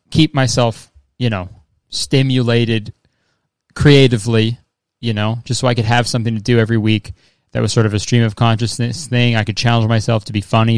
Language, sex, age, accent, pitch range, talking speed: English, male, 20-39, American, 110-130 Hz, 190 wpm